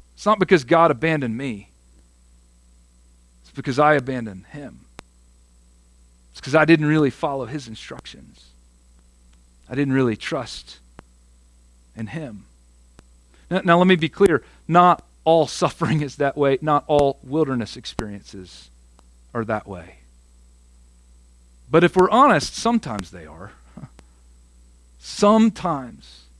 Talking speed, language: 120 wpm, English